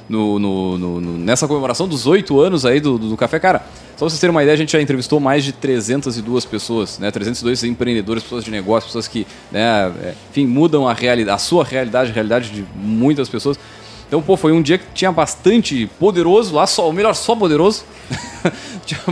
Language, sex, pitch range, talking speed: Portuguese, male, 115-170 Hz, 190 wpm